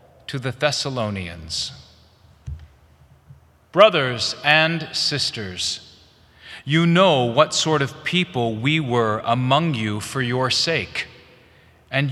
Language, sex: English, male